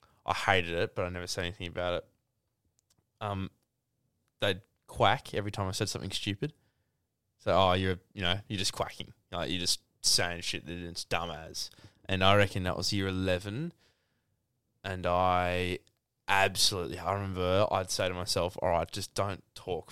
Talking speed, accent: 170 wpm, Australian